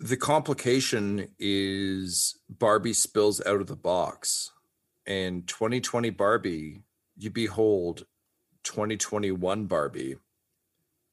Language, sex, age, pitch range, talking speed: English, male, 40-59, 95-115 Hz, 85 wpm